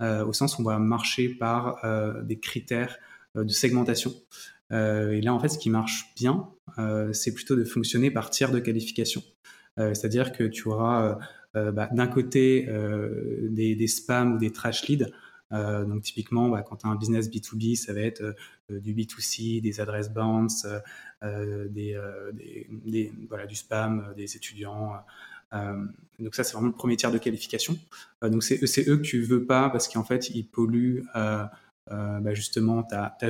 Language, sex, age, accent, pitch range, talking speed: French, male, 20-39, French, 105-120 Hz, 195 wpm